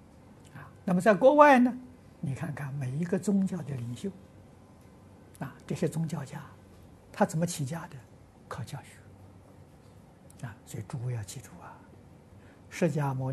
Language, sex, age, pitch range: Chinese, male, 60-79, 100-150 Hz